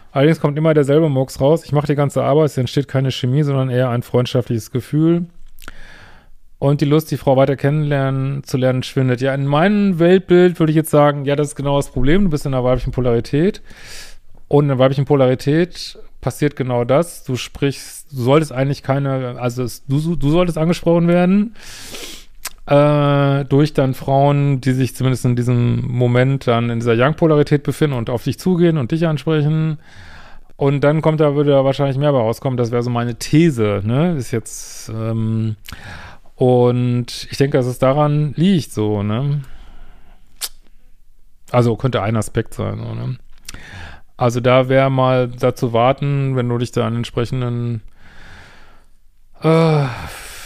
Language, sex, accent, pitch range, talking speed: German, male, German, 125-150 Hz, 165 wpm